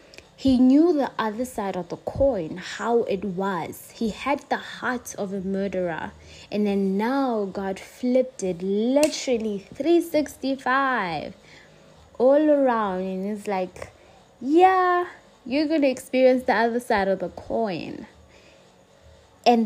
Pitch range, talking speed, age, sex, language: 205-270 Hz, 130 wpm, 20-39, female, English